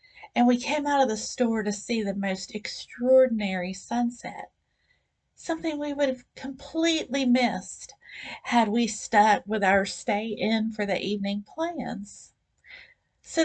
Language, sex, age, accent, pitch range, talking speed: English, female, 40-59, American, 205-260 Hz, 140 wpm